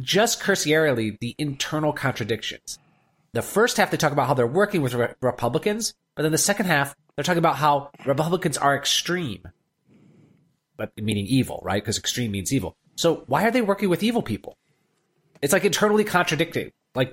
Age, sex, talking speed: 30-49, male, 175 wpm